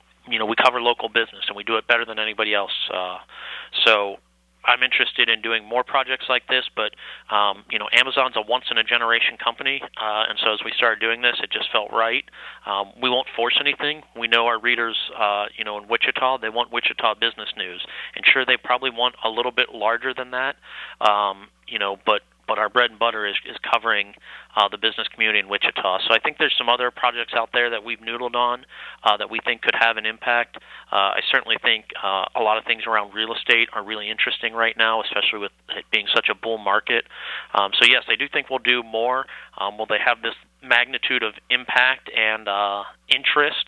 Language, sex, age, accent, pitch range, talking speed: English, male, 30-49, American, 105-120 Hz, 220 wpm